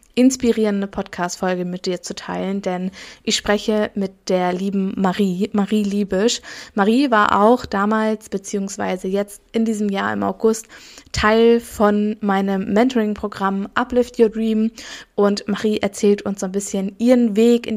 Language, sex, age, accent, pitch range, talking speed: German, female, 20-39, German, 200-220 Hz, 145 wpm